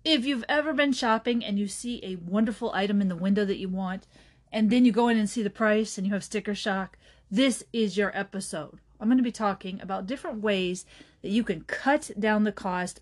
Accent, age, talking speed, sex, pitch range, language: American, 30-49, 230 wpm, female, 195-245 Hz, English